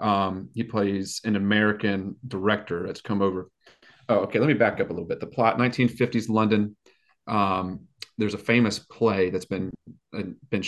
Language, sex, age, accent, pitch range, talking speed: English, male, 30-49, American, 95-105 Hz, 170 wpm